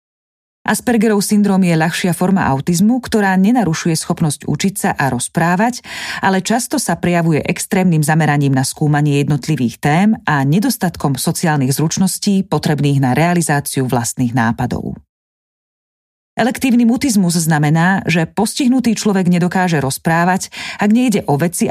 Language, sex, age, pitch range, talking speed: Slovak, female, 30-49, 145-195 Hz, 120 wpm